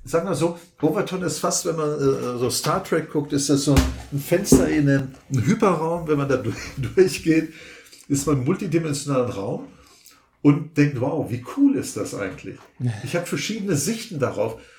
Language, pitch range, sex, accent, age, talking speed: German, 140-165 Hz, male, German, 60-79, 170 wpm